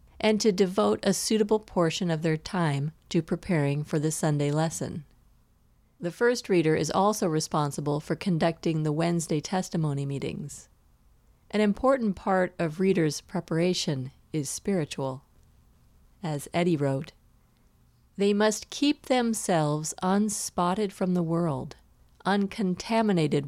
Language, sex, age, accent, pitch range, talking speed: English, female, 40-59, American, 150-190 Hz, 120 wpm